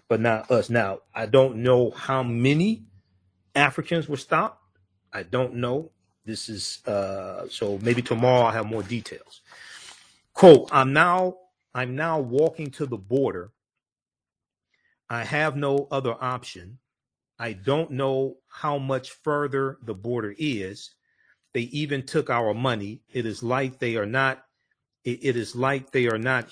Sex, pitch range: male, 115-145 Hz